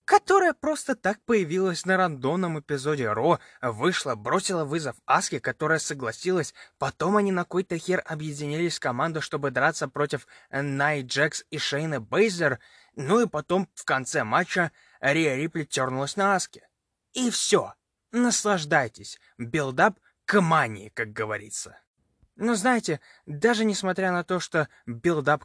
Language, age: English, 20-39